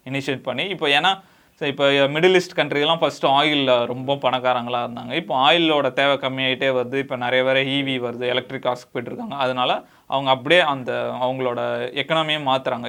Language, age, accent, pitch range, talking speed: Tamil, 20-39, native, 130-155 Hz, 145 wpm